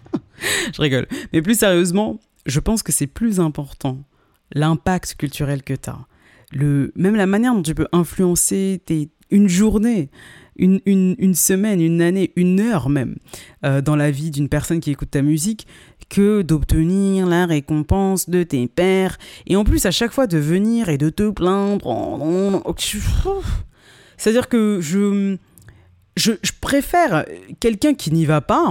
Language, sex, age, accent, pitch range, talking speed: French, female, 20-39, French, 145-200 Hz, 155 wpm